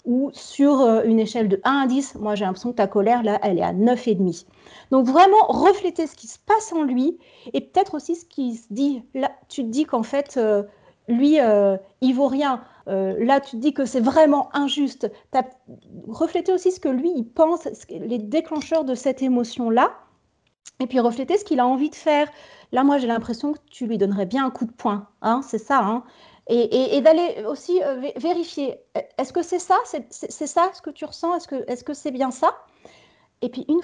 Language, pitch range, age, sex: French, 225-310 Hz, 40-59, female